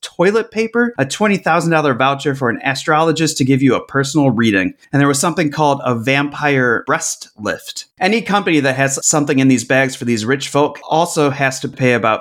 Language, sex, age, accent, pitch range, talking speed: English, male, 30-49, American, 125-165 Hz, 195 wpm